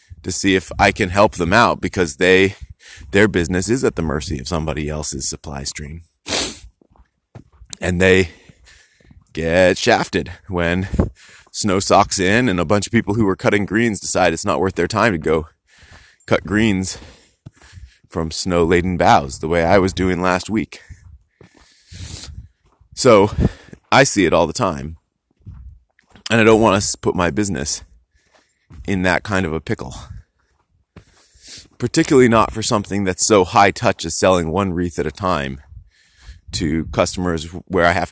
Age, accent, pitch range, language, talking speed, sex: 30-49, American, 85-100 Hz, English, 155 wpm, male